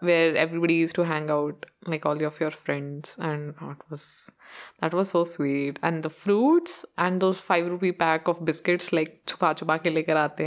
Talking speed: 195 wpm